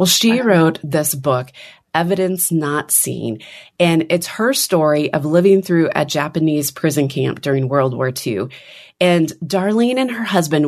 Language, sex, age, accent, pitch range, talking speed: English, female, 30-49, American, 140-175 Hz, 155 wpm